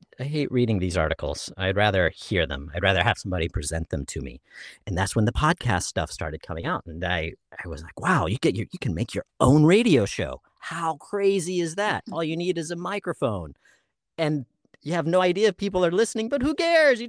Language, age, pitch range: English, 40-59, 90-135 Hz